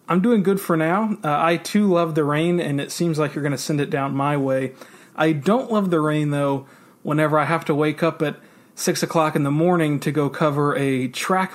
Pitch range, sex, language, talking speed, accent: 140-175 Hz, male, English, 240 wpm, American